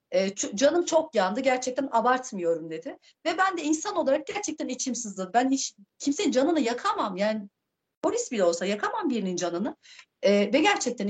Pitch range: 215-310 Hz